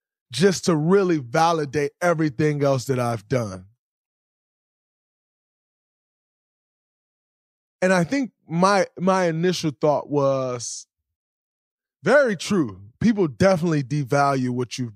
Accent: American